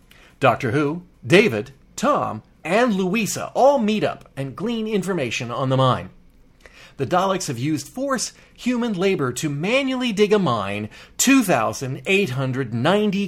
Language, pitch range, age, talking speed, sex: English, 135-185 Hz, 40-59, 125 wpm, male